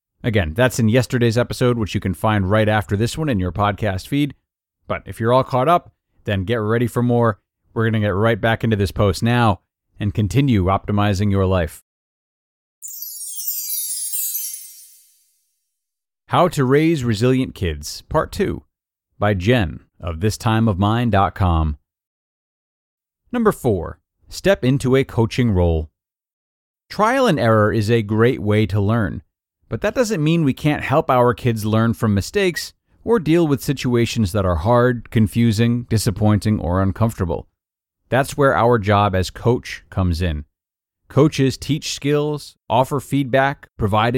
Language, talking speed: English, 145 wpm